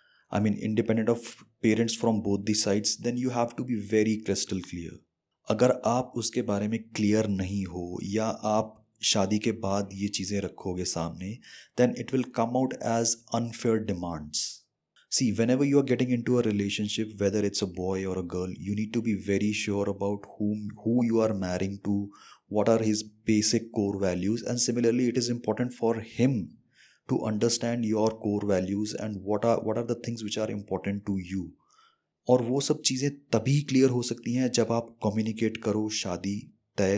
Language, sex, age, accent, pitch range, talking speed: Hindi, male, 20-39, native, 100-115 Hz, 190 wpm